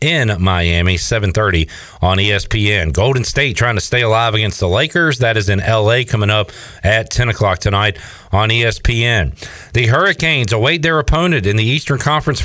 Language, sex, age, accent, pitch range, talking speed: English, male, 40-59, American, 100-130 Hz, 170 wpm